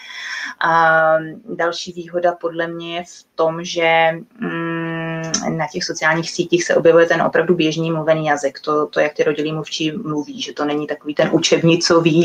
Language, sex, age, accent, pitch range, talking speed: Czech, female, 20-39, native, 160-175 Hz, 155 wpm